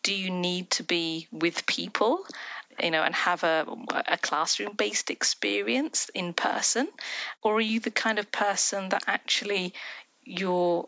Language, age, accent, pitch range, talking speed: English, 40-59, British, 175-240 Hz, 155 wpm